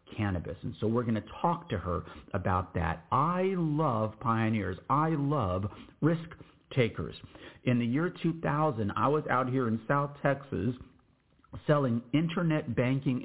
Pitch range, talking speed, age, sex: 100-140 Hz, 145 wpm, 50-69, male